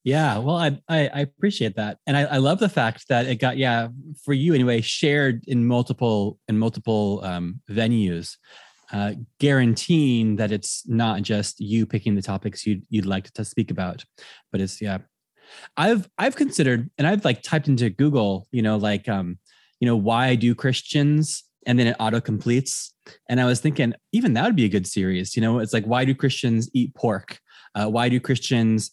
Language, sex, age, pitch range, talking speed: English, male, 20-39, 105-135 Hz, 195 wpm